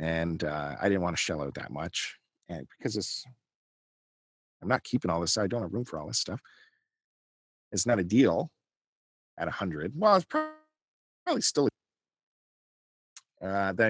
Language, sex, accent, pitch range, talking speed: English, male, American, 90-130 Hz, 175 wpm